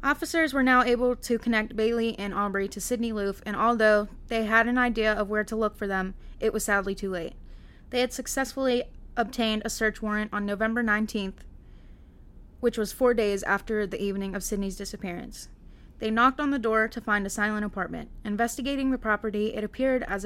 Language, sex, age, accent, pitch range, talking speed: English, female, 20-39, American, 200-235 Hz, 195 wpm